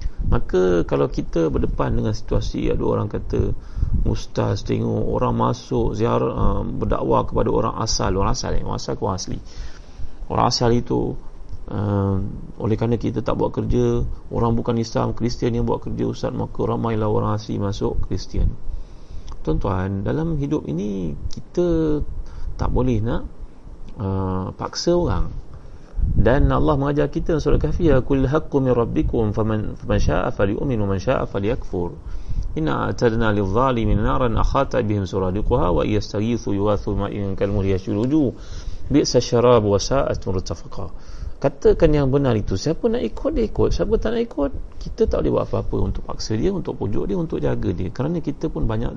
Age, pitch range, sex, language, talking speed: 30-49, 95-125 Hz, male, Malay, 145 wpm